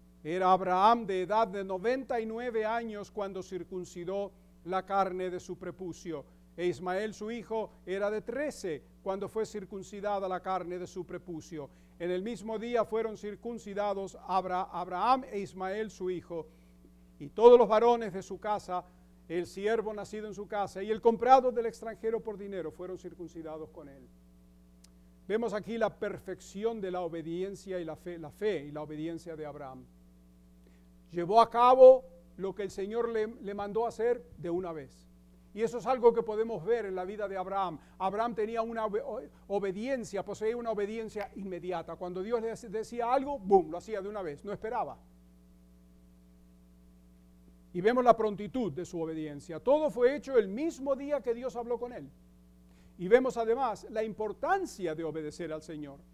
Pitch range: 165-220 Hz